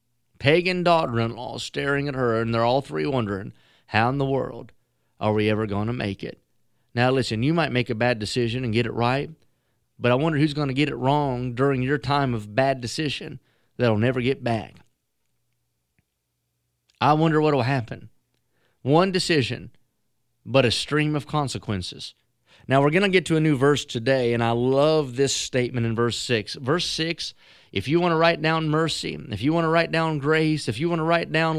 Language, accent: English, American